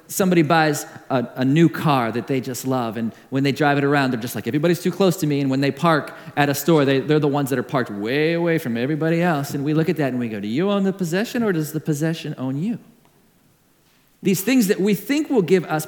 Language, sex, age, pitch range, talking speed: English, male, 40-59, 140-190 Hz, 260 wpm